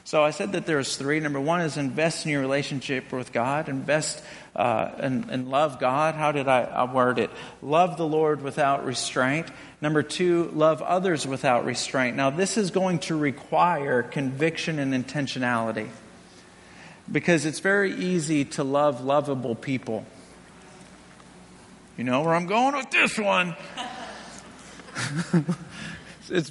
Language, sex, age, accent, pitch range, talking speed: English, male, 50-69, American, 140-210 Hz, 145 wpm